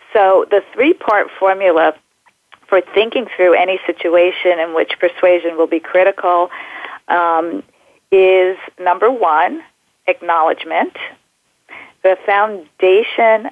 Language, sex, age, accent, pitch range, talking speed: English, female, 40-59, American, 170-195 Hz, 100 wpm